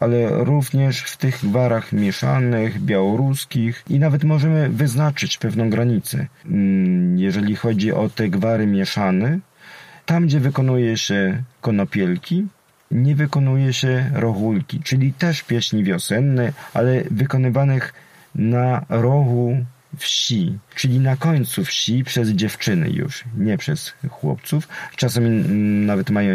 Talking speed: 115 wpm